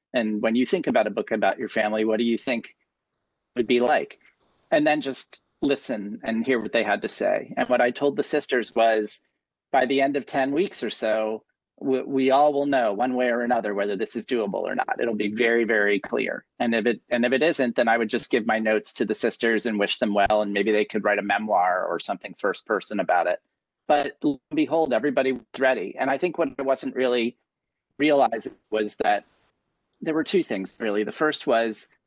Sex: male